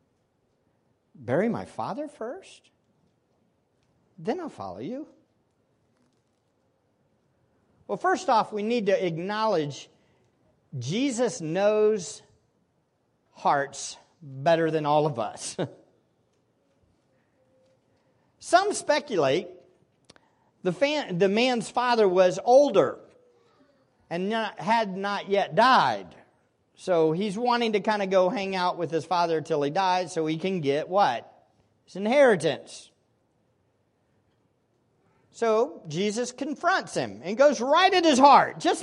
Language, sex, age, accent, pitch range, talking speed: English, male, 50-69, American, 165-260 Hz, 105 wpm